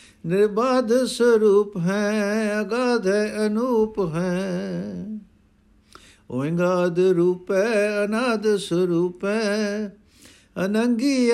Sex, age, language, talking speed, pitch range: male, 60-79, Punjabi, 70 wpm, 155-205 Hz